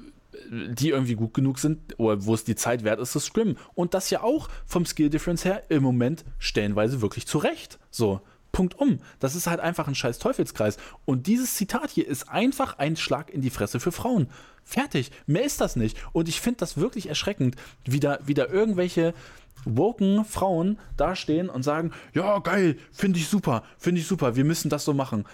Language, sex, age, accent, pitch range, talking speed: German, male, 20-39, German, 115-175 Hz, 200 wpm